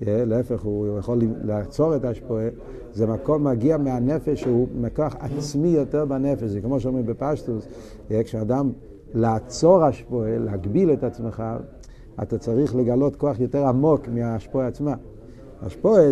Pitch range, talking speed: 125-165 Hz, 130 wpm